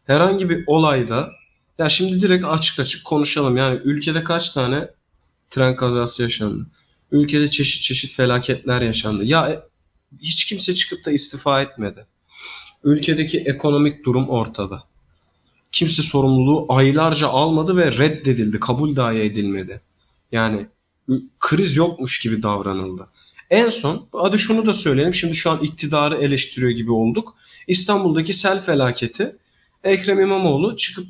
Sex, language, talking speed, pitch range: male, Turkish, 125 wpm, 130-185 Hz